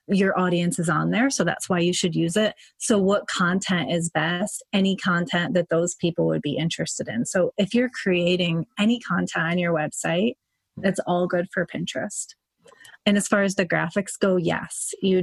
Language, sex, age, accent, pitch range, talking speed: English, female, 30-49, American, 170-195 Hz, 195 wpm